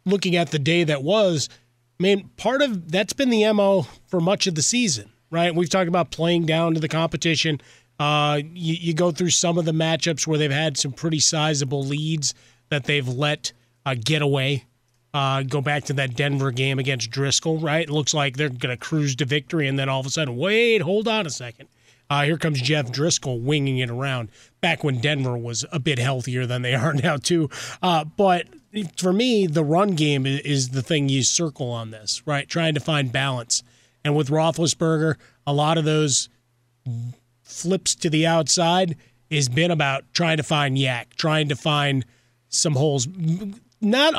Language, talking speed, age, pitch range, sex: English, 195 wpm, 30-49, 135-170 Hz, male